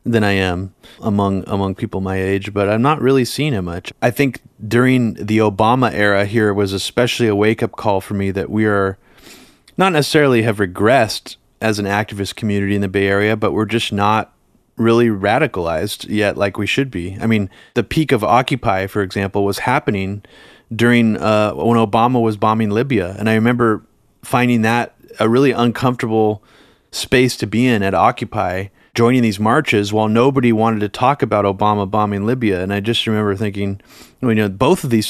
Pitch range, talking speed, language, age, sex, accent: 100-120 Hz, 185 wpm, English, 30-49, male, American